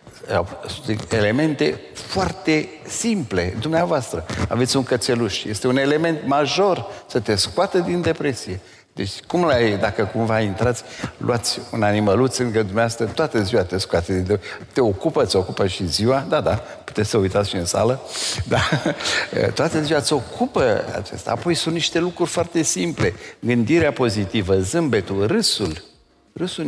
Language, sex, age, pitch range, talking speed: Romanian, male, 60-79, 105-150 Hz, 145 wpm